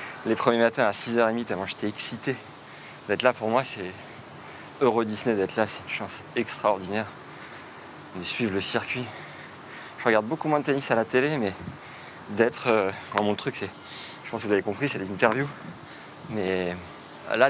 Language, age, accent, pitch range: French, 30-49, French, 105-130 Hz